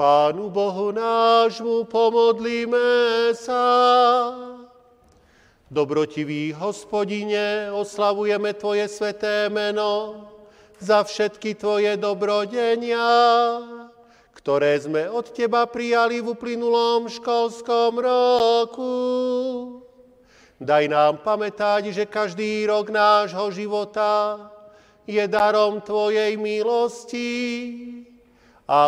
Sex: male